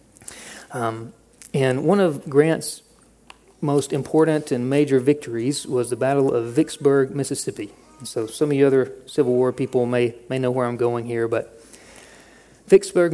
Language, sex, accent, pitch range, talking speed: English, male, American, 130-165 Hz, 150 wpm